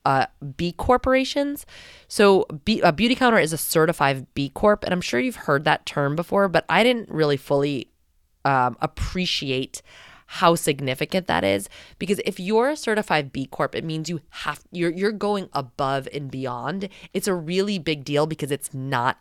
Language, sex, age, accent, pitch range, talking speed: English, female, 20-39, American, 135-170 Hz, 175 wpm